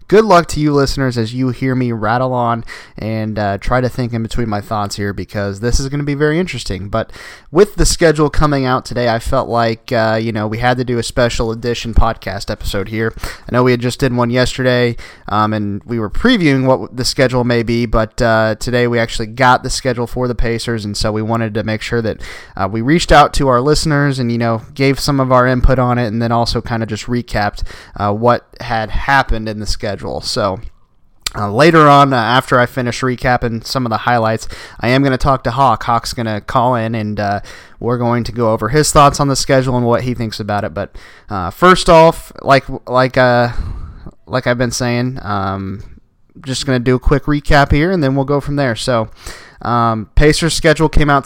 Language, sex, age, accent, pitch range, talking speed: English, male, 20-39, American, 110-130 Hz, 230 wpm